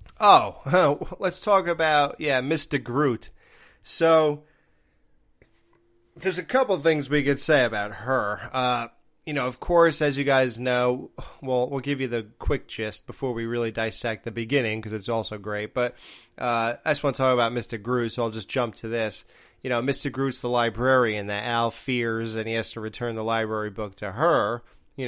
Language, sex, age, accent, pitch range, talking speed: English, male, 30-49, American, 115-150 Hz, 190 wpm